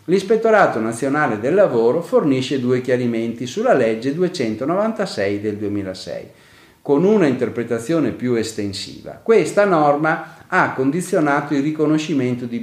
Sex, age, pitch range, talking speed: male, 40-59, 115-165 Hz, 115 wpm